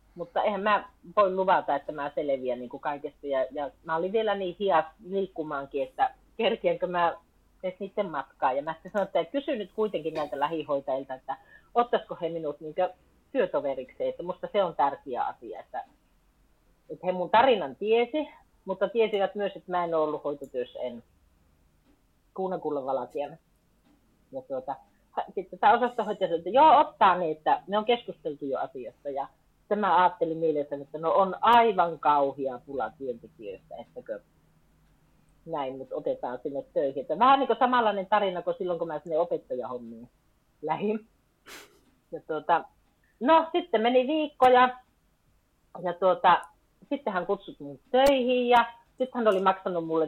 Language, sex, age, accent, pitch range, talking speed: Finnish, female, 30-49, native, 155-225 Hz, 135 wpm